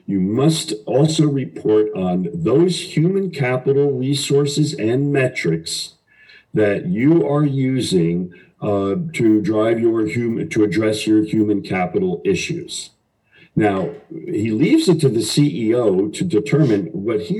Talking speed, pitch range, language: 130 wpm, 105-155 Hz, English